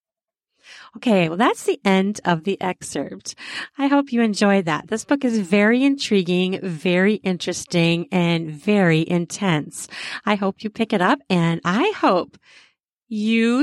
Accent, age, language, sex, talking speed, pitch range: American, 40-59, English, female, 145 wpm, 180-235 Hz